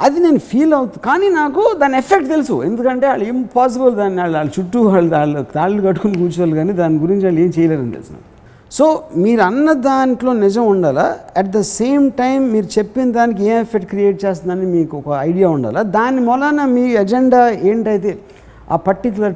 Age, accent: 60-79, native